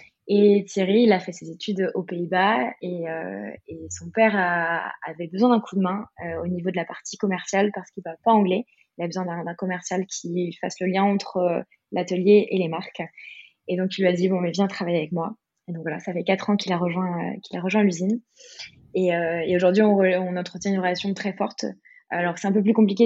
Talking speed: 245 wpm